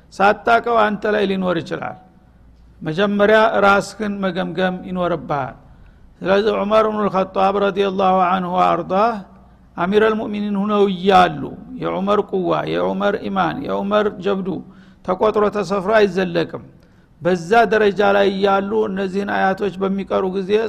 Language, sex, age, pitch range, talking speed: Amharic, male, 60-79, 185-205 Hz, 115 wpm